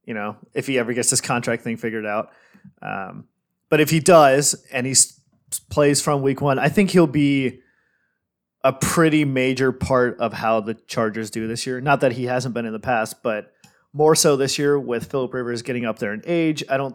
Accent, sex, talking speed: American, male, 215 wpm